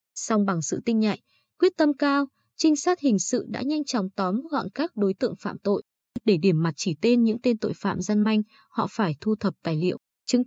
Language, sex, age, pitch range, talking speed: Vietnamese, female, 20-39, 195-260 Hz, 230 wpm